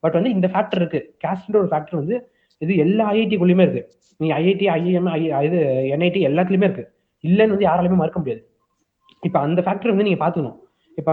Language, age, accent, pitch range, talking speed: Tamil, 30-49, native, 150-195 Hz, 180 wpm